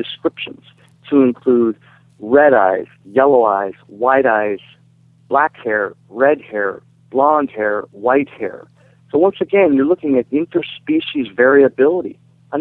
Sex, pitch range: male, 115-150 Hz